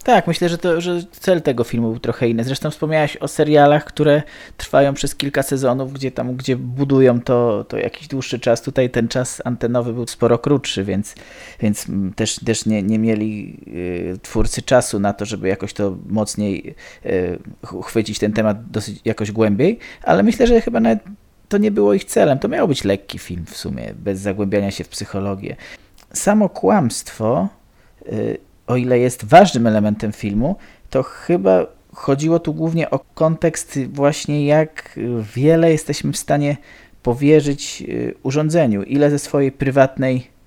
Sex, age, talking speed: male, 20-39, 160 wpm